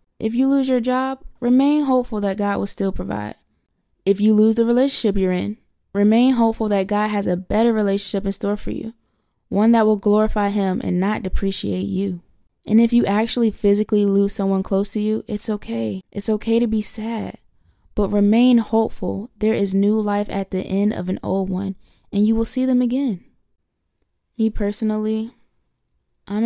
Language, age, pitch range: English, 20-39, 185-220 Hz